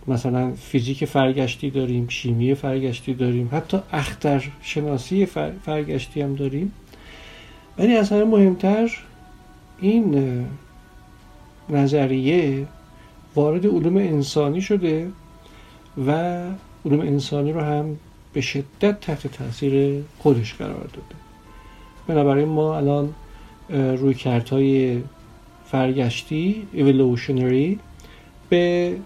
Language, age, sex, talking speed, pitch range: Persian, 50-69, male, 90 wpm, 125-160 Hz